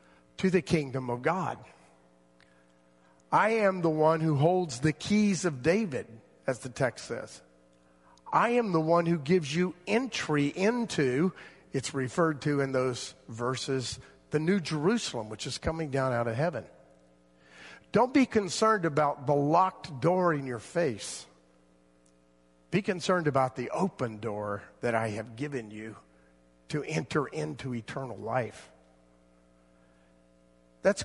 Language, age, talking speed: English, 50-69, 135 wpm